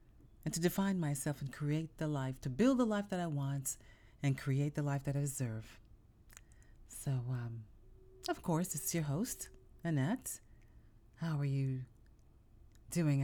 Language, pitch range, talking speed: English, 130-180 Hz, 155 wpm